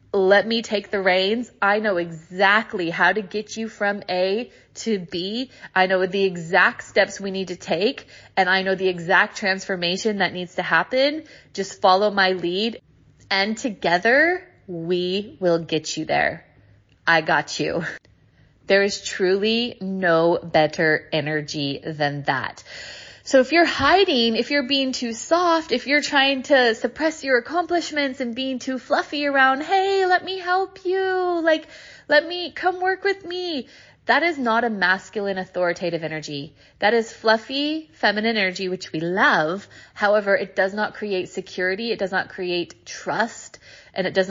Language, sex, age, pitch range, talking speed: English, female, 20-39, 185-260 Hz, 160 wpm